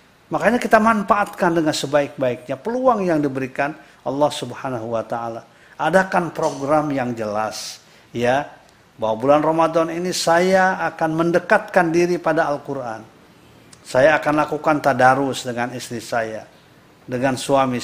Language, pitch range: Indonesian, 125-165 Hz